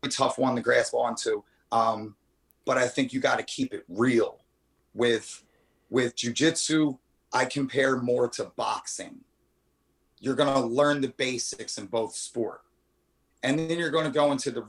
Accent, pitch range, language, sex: American, 110-150 Hz, English, male